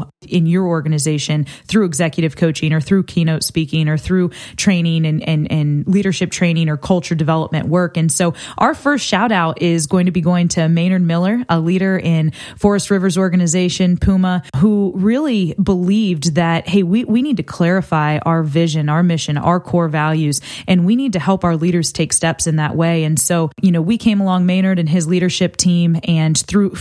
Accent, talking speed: American, 190 wpm